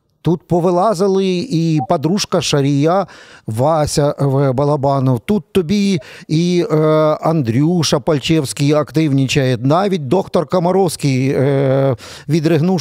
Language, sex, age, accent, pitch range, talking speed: Ukrainian, male, 40-59, native, 145-195 Hz, 90 wpm